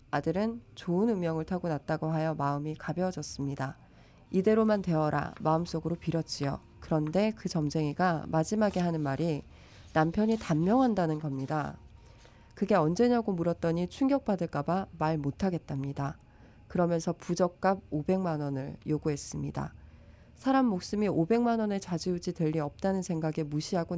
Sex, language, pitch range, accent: female, Korean, 145-185 Hz, native